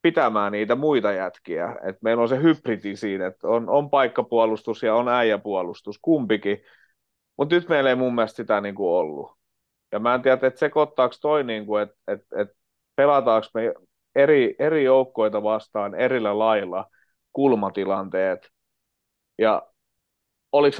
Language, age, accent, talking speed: Finnish, 30-49, native, 145 wpm